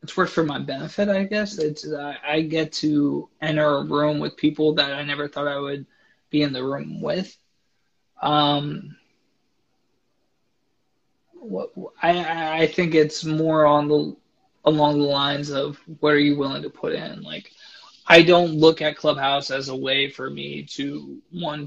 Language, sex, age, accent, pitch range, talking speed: English, male, 20-39, American, 145-160 Hz, 170 wpm